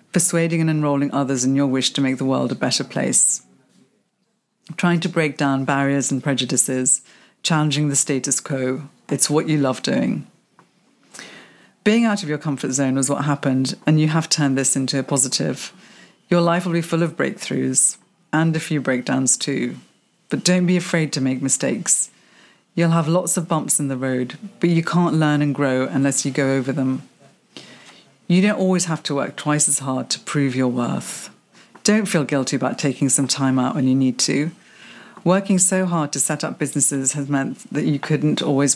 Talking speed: 190 wpm